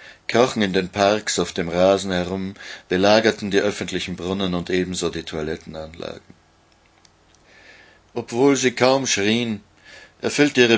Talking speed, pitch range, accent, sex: 120 wpm, 85-100 Hz, German, male